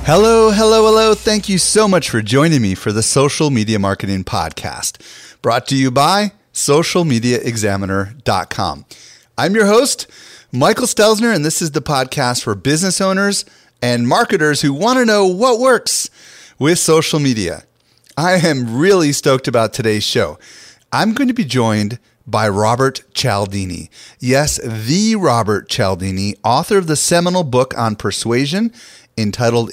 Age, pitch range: 30-49, 105-150 Hz